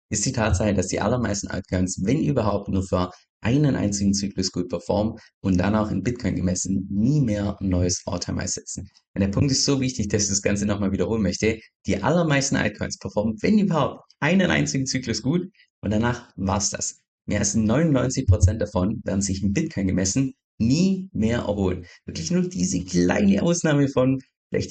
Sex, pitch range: male, 95-120 Hz